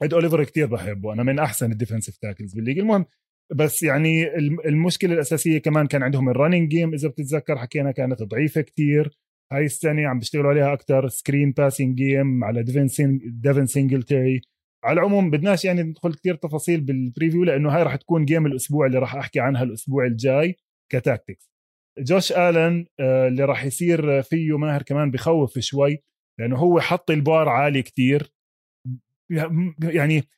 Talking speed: 150 wpm